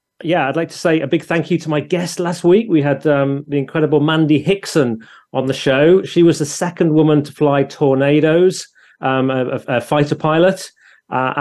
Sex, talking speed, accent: male, 200 wpm, British